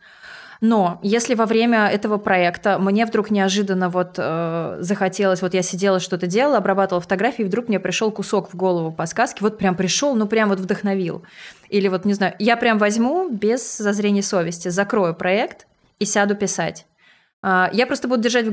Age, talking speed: 20-39, 180 wpm